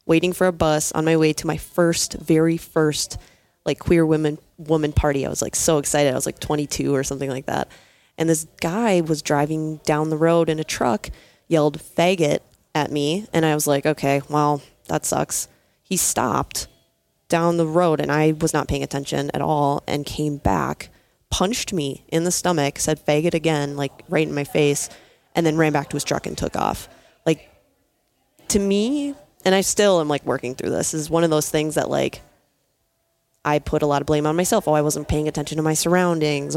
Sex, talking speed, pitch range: female, 210 wpm, 145-165 Hz